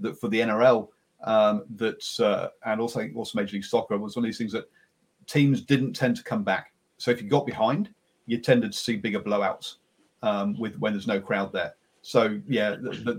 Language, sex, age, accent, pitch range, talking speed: English, male, 40-59, British, 105-145 Hz, 215 wpm